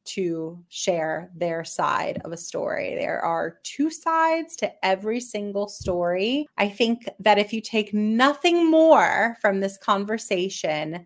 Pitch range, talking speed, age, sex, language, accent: 175-215 Hz, 140 wpm, 30-49, female, English, American